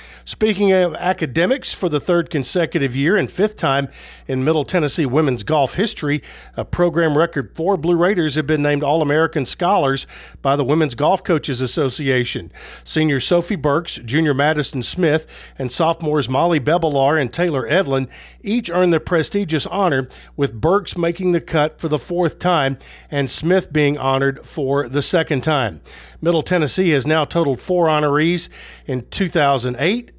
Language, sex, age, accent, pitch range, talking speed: English, male, 50-69, American, 135-170 Hz, 155 wpm